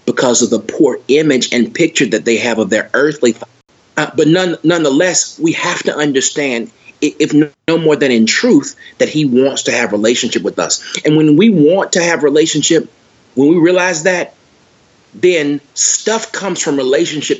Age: 40-59